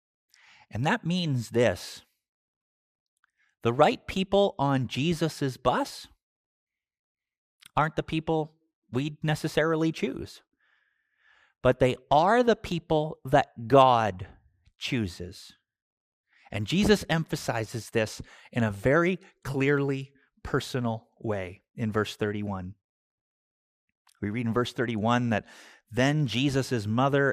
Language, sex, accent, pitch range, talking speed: English, male, American, 115-160 Hz, 100 wpm